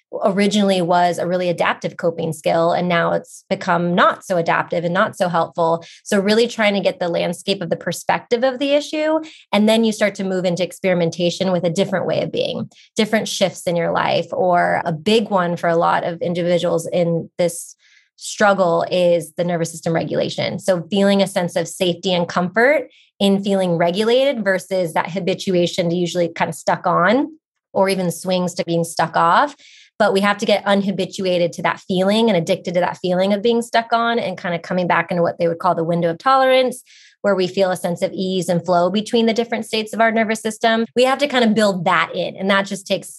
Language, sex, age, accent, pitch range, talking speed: English, female, 20-39, American, 175-205 Hz, 215 wpm